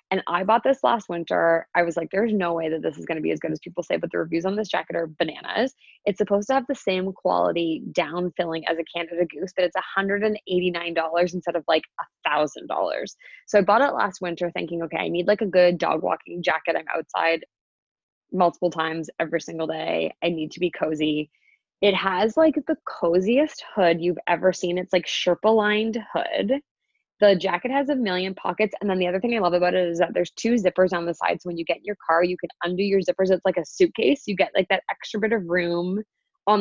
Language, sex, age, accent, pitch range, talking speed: English, female, 20-39, American, 175-215 Hz, 230 wpm